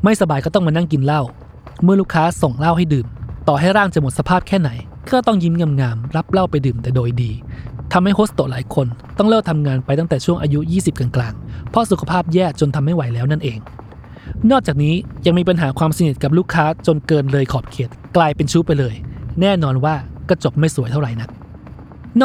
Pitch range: 135-180 Hz